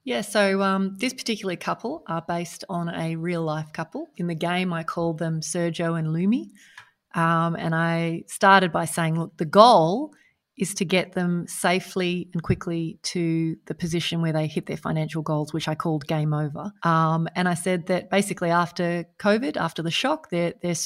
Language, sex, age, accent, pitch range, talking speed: English, female, 30-49, Australian, 165-195 Hz, 185 wpm